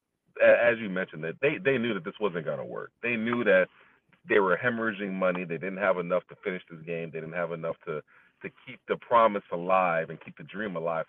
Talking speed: 225 wpm